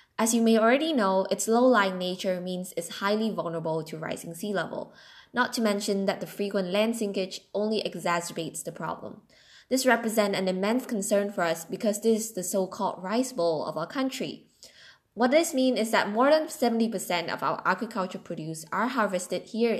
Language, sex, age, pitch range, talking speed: Vietnamese, female, 10-29, 180-225 Hz, 180 wpm